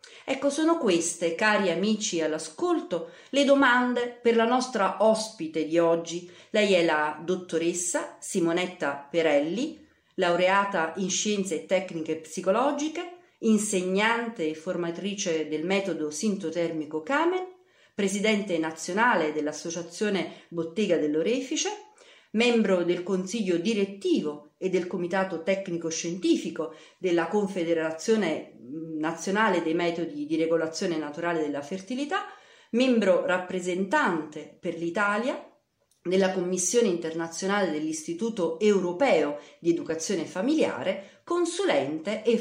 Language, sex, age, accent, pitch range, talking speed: Italian, female, 40-59, native, 165-235 Hz, 100 wpm